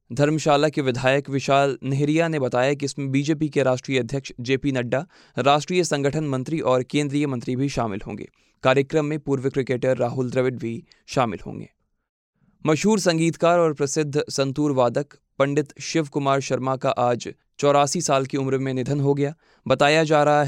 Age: 20-39